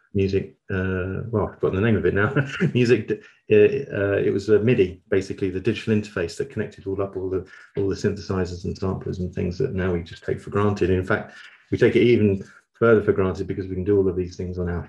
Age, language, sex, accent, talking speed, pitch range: 30-49, English, male, British, 240 wpm, 95-110 Hz